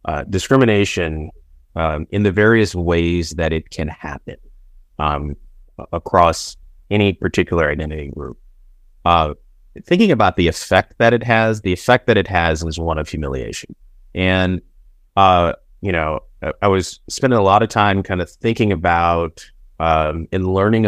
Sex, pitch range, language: male, 80-100 Hz, English